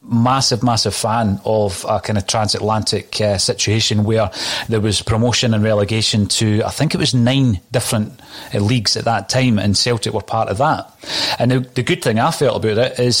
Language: English